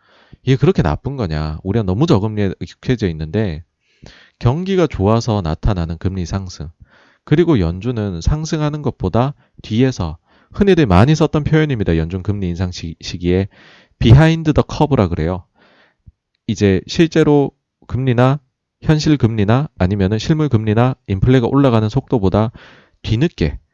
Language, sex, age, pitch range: Korean, male, 30-49, 90-135 Hz